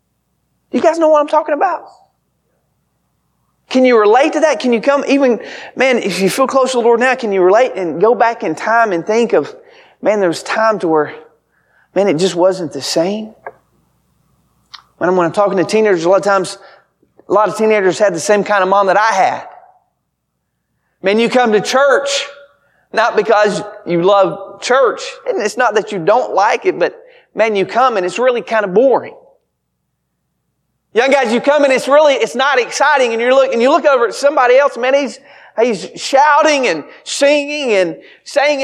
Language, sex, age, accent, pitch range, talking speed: English, male, 30-49, American, 200-290 Hz, 195 wpm